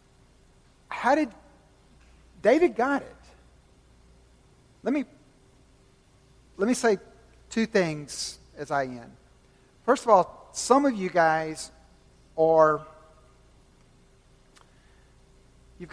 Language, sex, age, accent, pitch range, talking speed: English, male, 50-69, American, 150-235 Hz, 90 wpm